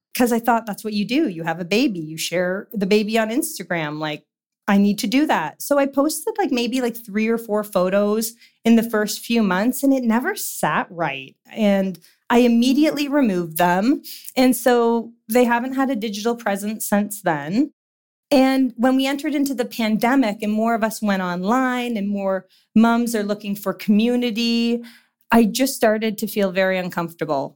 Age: 30-49